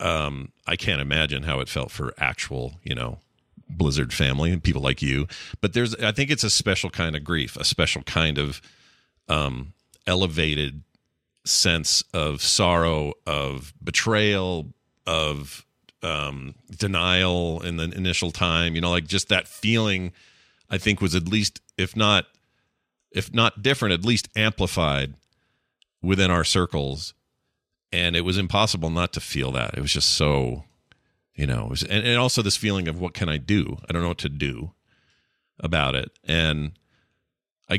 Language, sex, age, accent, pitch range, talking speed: English, male, 40-59, American, 75-105 Hz, 160 wpm